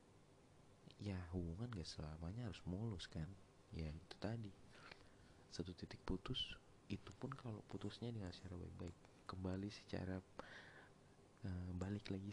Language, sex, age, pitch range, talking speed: Indonesian, male, 30-49, 90-115 Hz, 120 wpm